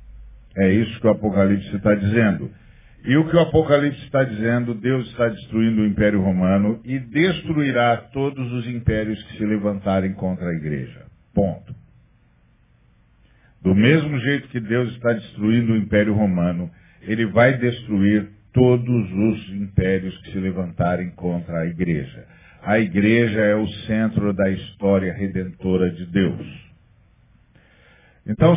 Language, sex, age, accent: Portuguese, male, 50-69, Brazilian